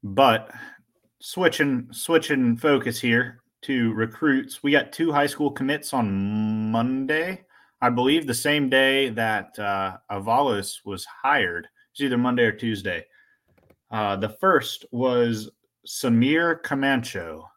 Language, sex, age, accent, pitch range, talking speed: English, male, 30-49, American, 105-140 Hz, 125 wpm